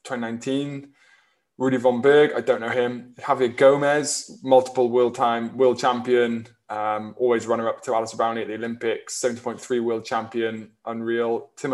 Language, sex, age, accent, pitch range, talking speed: English, male, 20-39, British, 115-130 Hz, 150 wpm